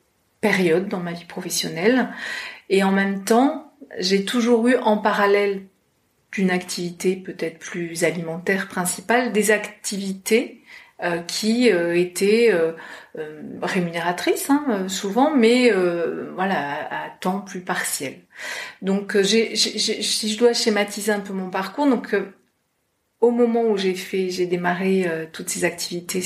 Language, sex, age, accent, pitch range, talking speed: French, female, 40-59, French, 175-220 Hz, 145 wpm